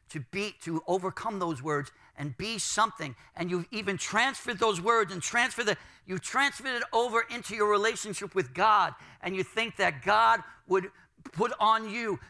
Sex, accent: male, American